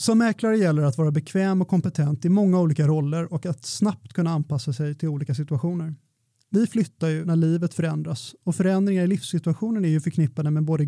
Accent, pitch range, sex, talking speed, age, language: native, 150-180 Hz, male, 200 wpm, 30-49, Swedish